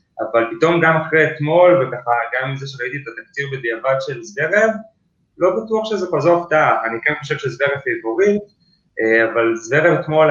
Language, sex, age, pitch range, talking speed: Hebrew, male, 20-39, 115-150 Hz, 155 wpm